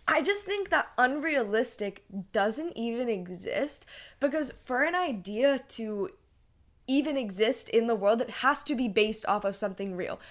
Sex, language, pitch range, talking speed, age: female, English, 200-255 Hz, 155 wpm, 10-29